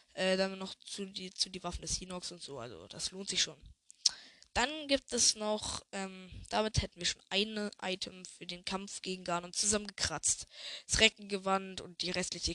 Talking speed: 190 wpm